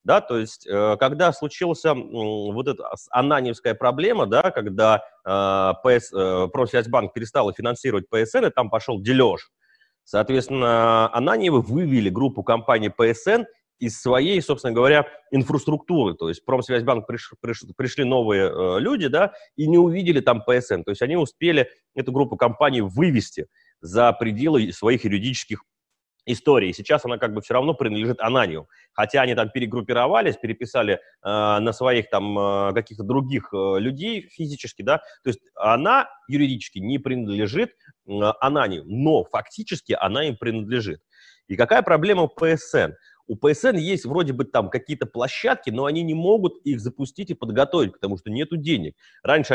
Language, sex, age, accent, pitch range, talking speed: Russian, male, 30-49, native, 105-145 Hz, 155 wpm